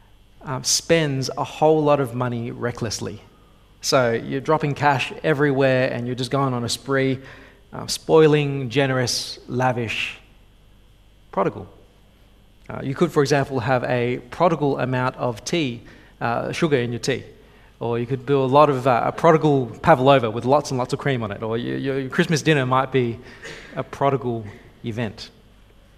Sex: male